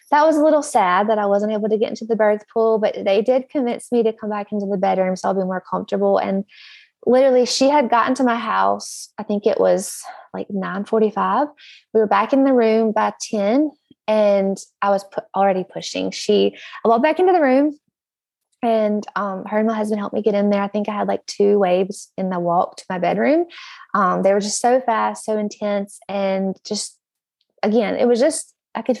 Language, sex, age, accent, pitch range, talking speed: English, female, 20-39, American, 200-255 Hz, 215 wpm